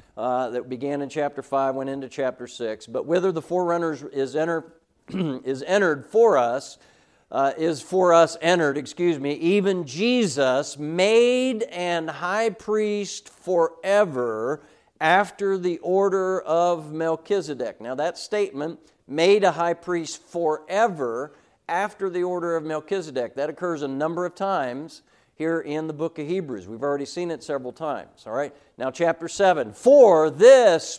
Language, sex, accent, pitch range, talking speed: English, male, American, 155-205 Hz, 150 wpm